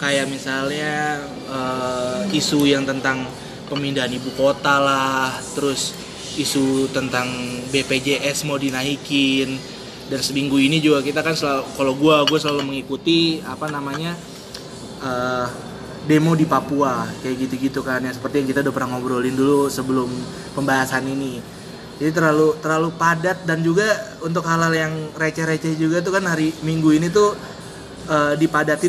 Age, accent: 20-39, native